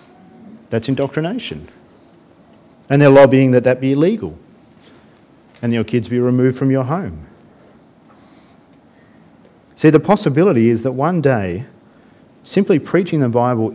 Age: 40-59